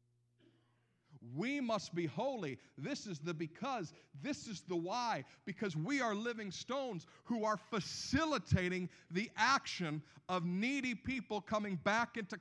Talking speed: 135 wpm